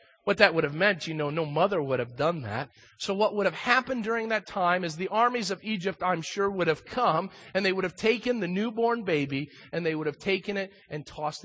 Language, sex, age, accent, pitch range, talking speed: English, male, 40-59, American, 130-200 Hz, 245 wpm